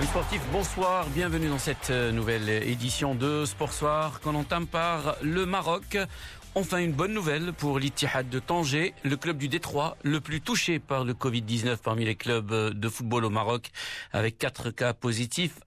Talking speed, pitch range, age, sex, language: 170 wpm, 120-150 Hz, 50-69, male, Arabic